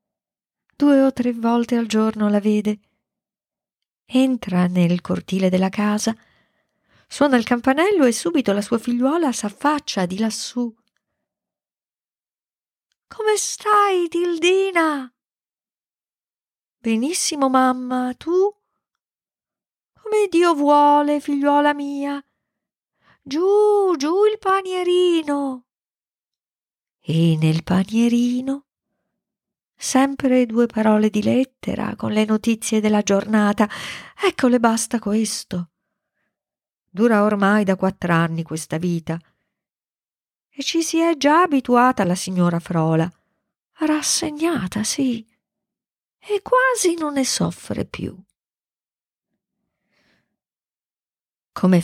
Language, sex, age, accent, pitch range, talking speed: Italian, female, 40-59, native, 195-295 Hz, 95 wpm